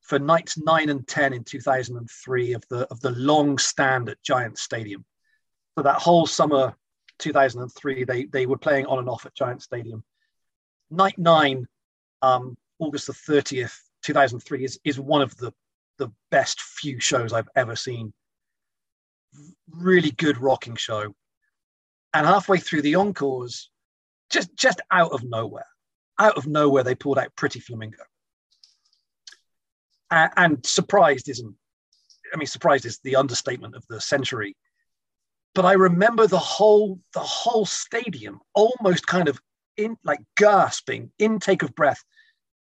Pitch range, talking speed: 125-180 Hz, 145 wpm